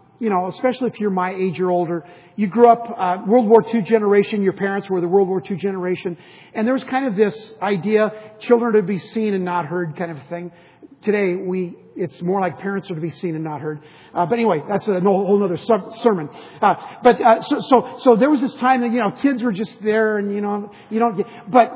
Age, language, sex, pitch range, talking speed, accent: 50-69, English, male, 180-225 Hz, 245 wpm, American